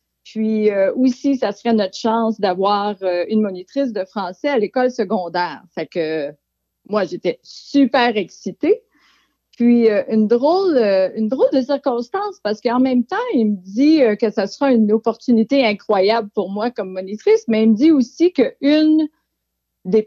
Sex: female